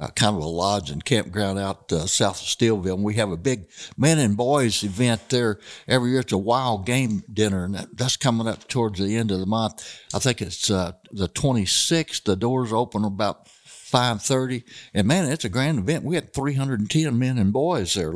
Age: 60-79